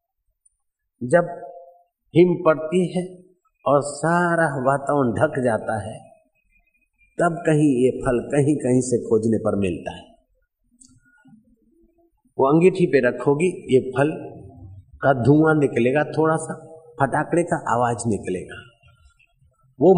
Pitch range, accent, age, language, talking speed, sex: 115-160 Hz, native, 50-69, Hindi, 110 wpm, male